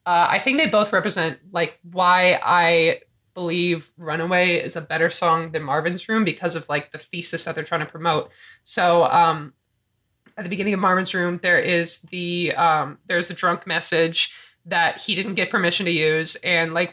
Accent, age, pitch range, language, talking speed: American, 20-39, 170-225 Hz, English, 190 wpm